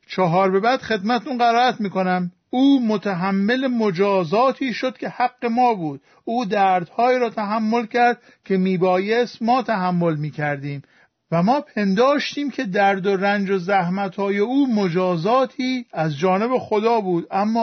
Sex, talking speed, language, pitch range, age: male, 135 wpm, Persian, 185-235 Hz, 50-69